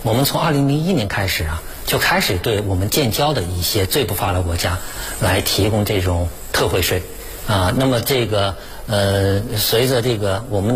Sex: male